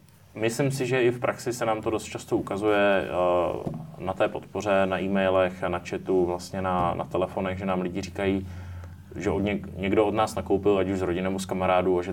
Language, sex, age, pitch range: Czech, male, 20-39, 95-105 Hz